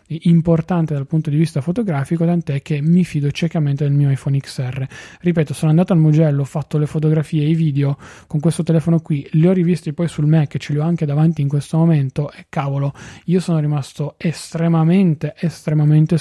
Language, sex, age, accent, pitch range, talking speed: Italian, male, 20-39, native, 145-165 Hz, 190 wpm